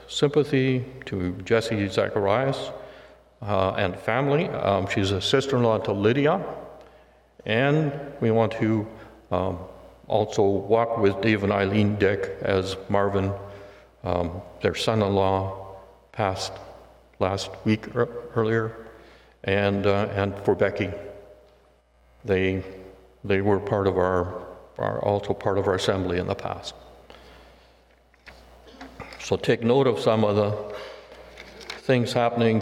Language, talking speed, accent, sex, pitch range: English, 115 wpm, American, male, 95-115 Hz